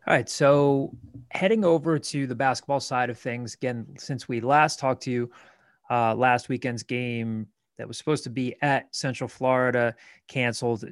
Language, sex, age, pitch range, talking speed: English, male, 20-39, 120-135 Hz, 170 wpm